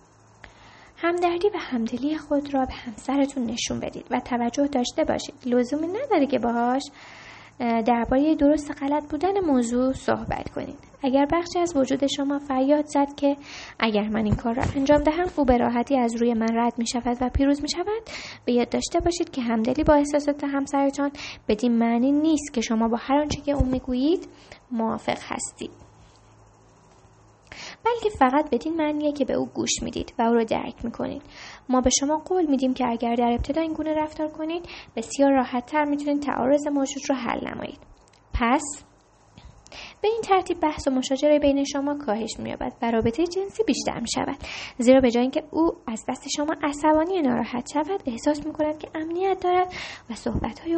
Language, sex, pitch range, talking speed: Persian, female, 245-310 Hz, 170 wpm